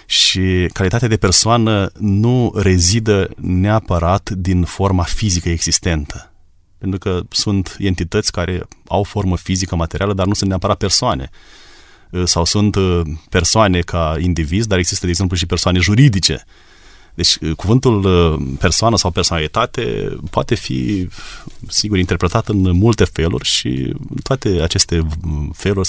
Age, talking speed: 30-49, 125 wpm